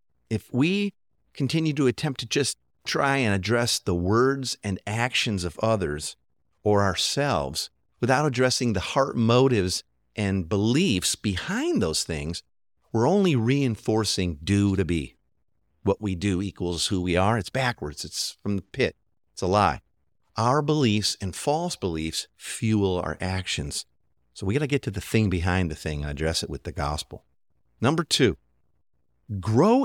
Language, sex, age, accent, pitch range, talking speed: English, male, 50-69, American, 90-130 Hz, 155 wpm